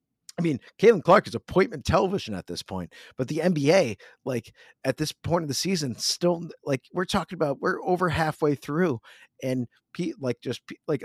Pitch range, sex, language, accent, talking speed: 105-140 Hz, male, English, American, 185 wpm